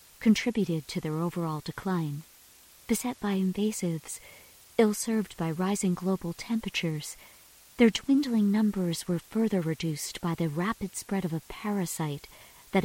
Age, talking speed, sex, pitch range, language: 50-69, 125 wpm, female, 165-210 Hz, English